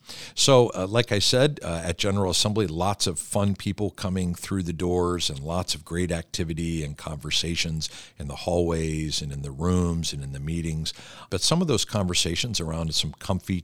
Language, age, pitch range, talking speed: English, 50-69, 80-95 Hz, 190 wpm